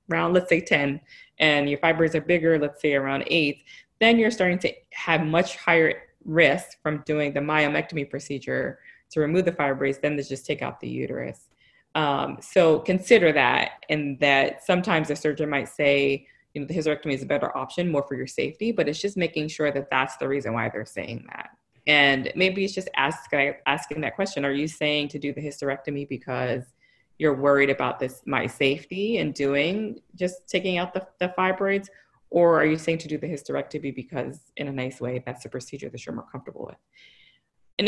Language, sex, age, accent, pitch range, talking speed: English, female, 20-39, American, 140-185 Hz, 200 wpm